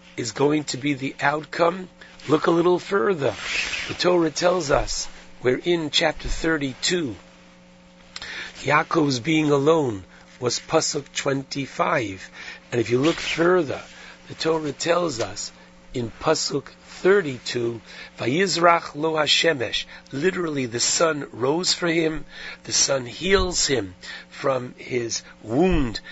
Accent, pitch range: American, 115-160 Hz